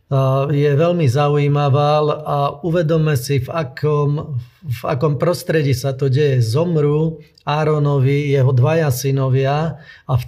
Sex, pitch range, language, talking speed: male, 135-155 Hz, Slovak, 125 wpm